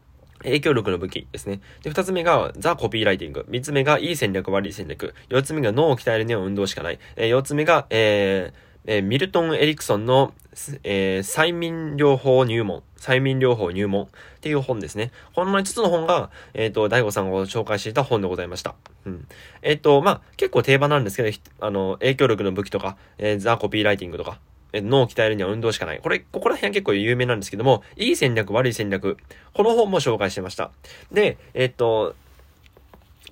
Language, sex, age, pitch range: Japanese, male, 20-39, 95-145 Hz